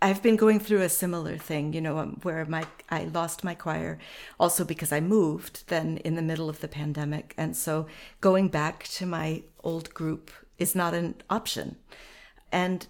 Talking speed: 180 wpm